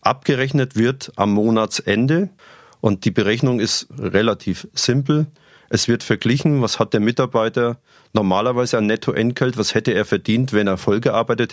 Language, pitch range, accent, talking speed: German, 105-130 Hz, German, 140 wpm